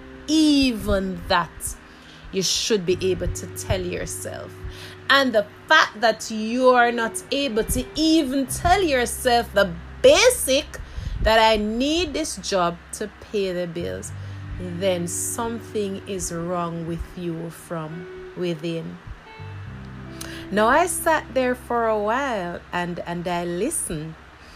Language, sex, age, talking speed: English, female, 30-49, 125 wpm